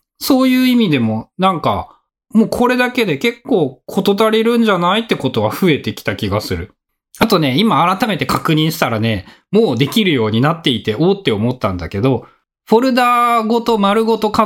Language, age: Japanese, 20-39